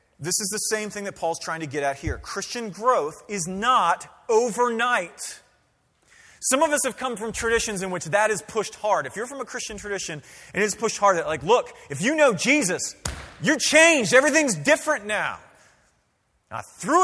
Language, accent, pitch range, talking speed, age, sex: English, American, 170-245 Hz, 190 wpm, 30-49, male